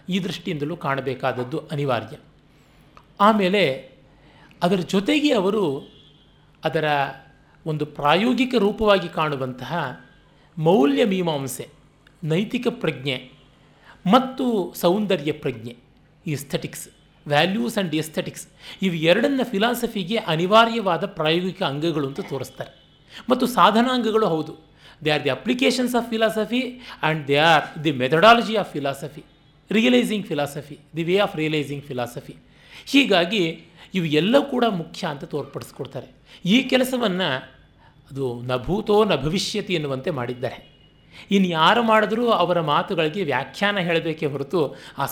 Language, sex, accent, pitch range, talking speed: Kannada, male, native, 140-200 Hz, 105 wpm